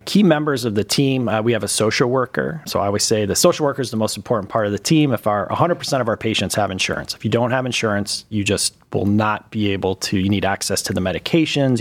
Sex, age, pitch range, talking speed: male, 30-49, 100-120 Hz, 265 wpm